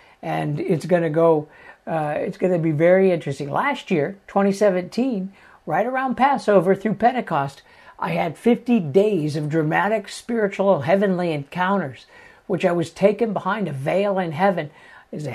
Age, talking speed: 60-79, 155 wpm